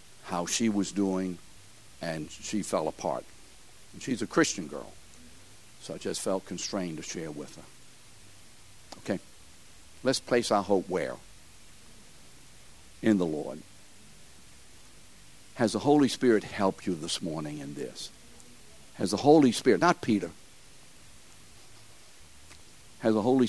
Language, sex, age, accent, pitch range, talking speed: English, male, 60-79, American, 85-110 Hz, 125 wpm